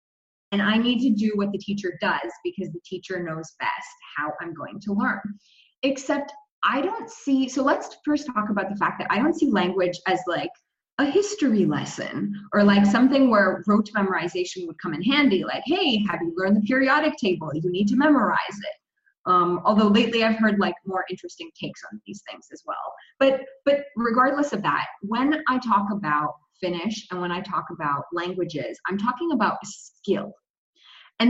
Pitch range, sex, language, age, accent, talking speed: 190-265 Hz, female, English, 20-39, American, 190 wpm